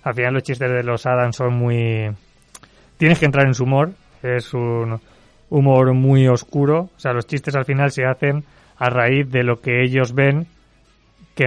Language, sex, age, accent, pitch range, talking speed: Spanish, male, 30-49, Spanish, 115-135 Hz, 190 wpm